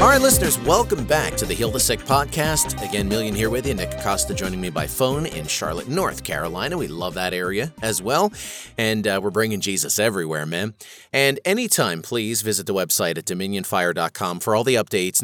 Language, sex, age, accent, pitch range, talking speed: English, male, 30-49, American, 95-130 Hz, 200 wpm